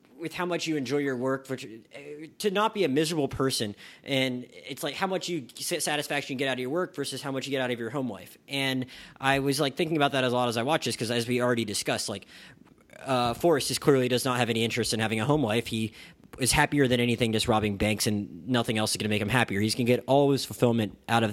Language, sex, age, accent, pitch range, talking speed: English, male, 20-39, American, 115-140 Hz, 270 wpm